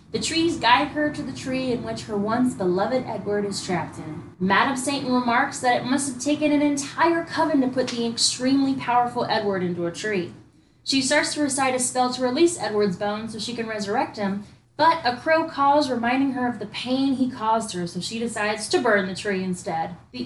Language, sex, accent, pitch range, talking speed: English, female, American, 210-275 Hz, 215 wpm